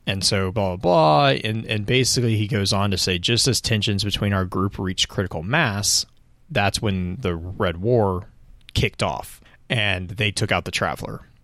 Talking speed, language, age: 185 wpm, English, 30-49